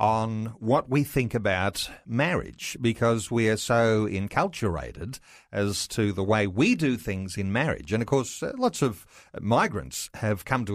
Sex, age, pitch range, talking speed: male, 40-59, 100-125 Hz, 160 wpm